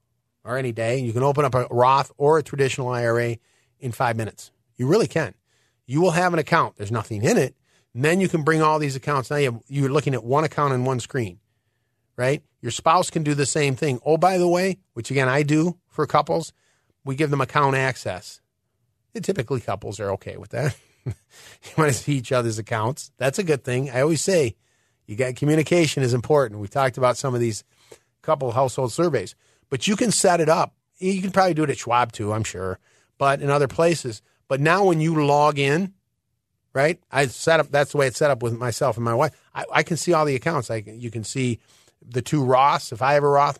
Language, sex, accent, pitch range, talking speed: English, male, American, 120-150 Hz, 230 wpm